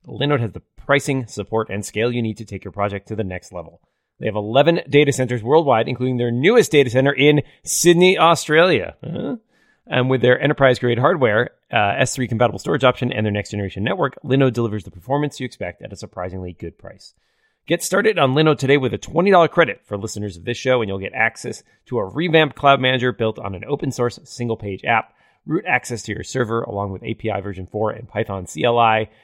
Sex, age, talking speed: male, 30-49, 200 wpm